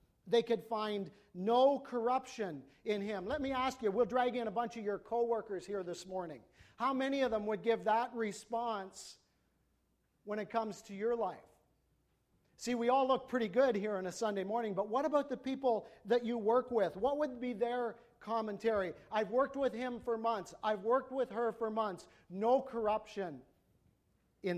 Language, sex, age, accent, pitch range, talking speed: English, male, 50-69, American, 190-235 Hz, 185 wpm